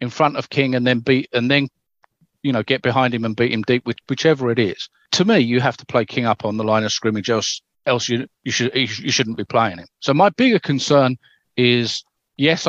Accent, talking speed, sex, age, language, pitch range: British, 240 wpm, male, 40-59, English, 115-140 Hz